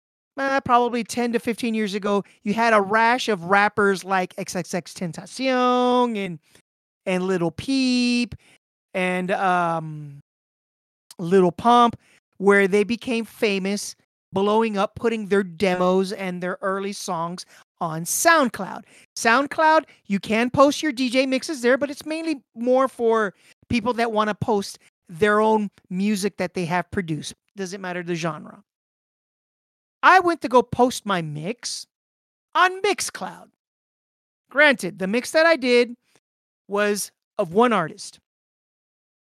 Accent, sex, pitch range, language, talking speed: American, male, 190-255 Hz, English, 130 wpm